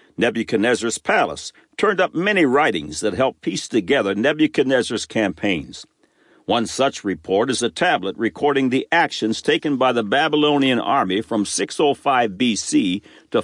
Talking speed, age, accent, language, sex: 135 wpm, 60-79, American, English, male